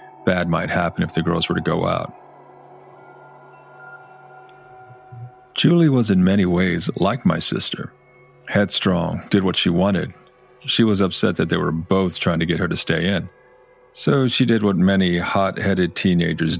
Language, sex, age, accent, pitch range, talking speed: English, male, 40-59, American, 90-125 Hz, 160 wpm